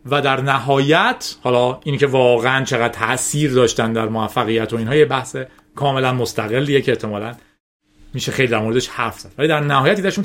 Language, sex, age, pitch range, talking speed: Persian, male, 40-59, 130-185 Hz, 170 wpm